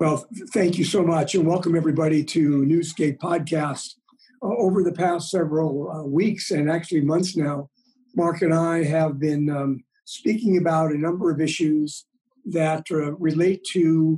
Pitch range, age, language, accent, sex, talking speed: 160-200 Hz, 50-69, English, American, male, 160 wpm